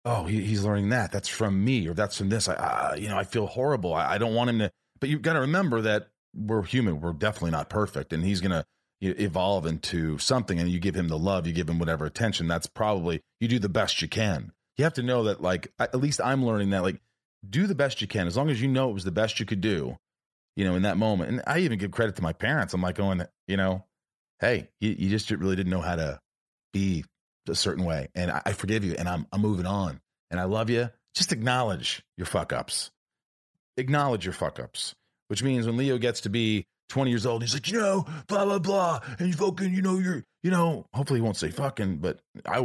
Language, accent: English, American